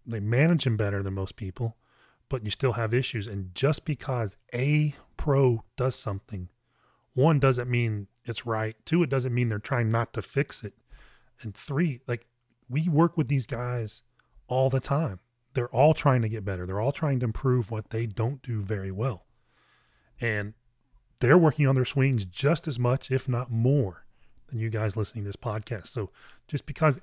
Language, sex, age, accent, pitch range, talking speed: English, male, 30-49, American, 110-130 Hz, 185 wpm